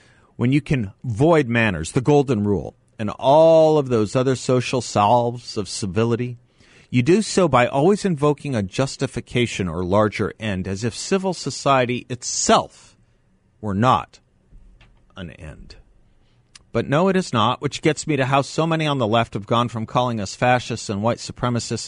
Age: 40-59